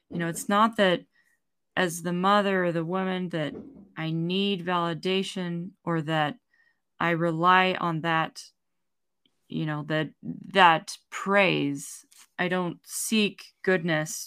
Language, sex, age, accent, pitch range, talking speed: English, female, 20-39, American, 165-195 Hz, 125 wpm